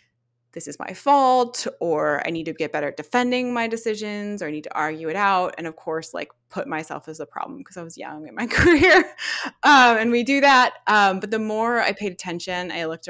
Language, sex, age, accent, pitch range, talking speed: English, female, 20-39, American, 150-200 Hz, 235 wpm